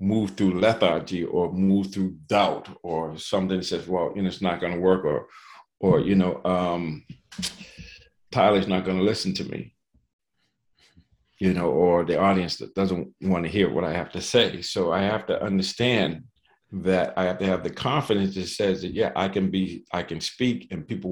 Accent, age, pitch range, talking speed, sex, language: American, 50-69, 95-110 Hz, 190 wpm, male, English